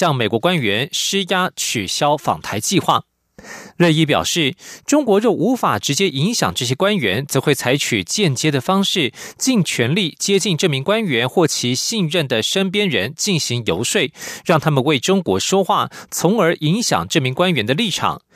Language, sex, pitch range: German, male, 150-200 Hz